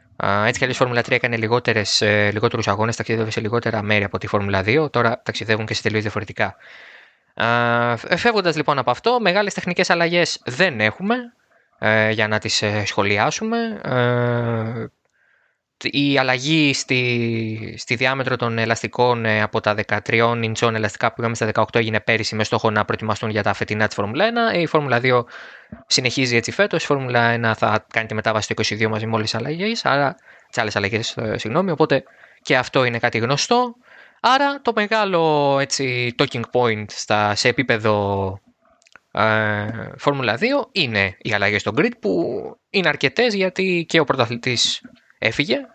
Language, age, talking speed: Greek, 20-39, 150 wpm